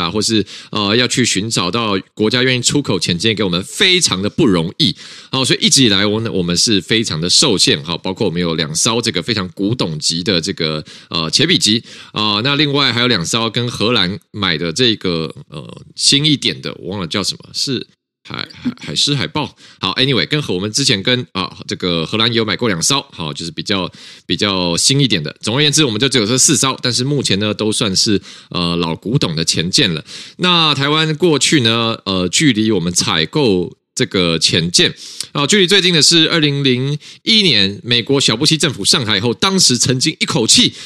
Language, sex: Chinese, male